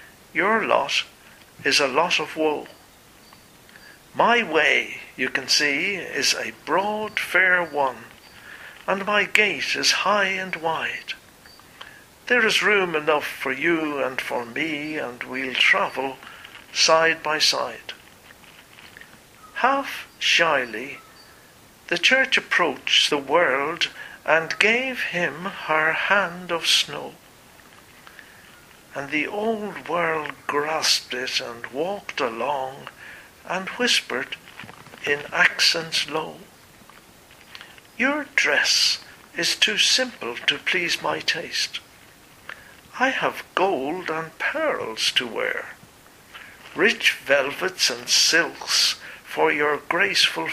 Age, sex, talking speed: 60-79, male, 105 wpm